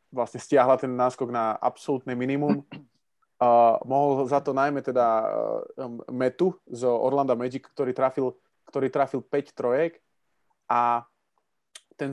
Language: Slovak